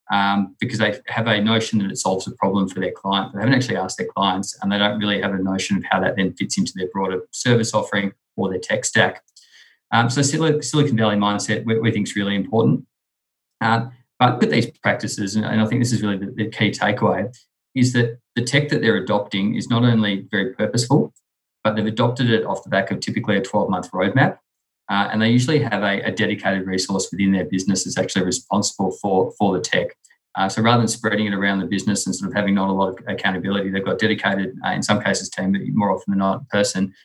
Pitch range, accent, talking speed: 100-115 Hz, Australian, 230 wpm